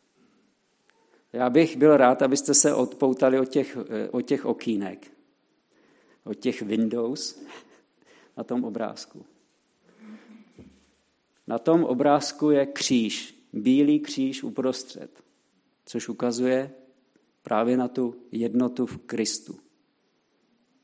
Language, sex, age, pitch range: Czech, male, 50-69, 115-160 Hz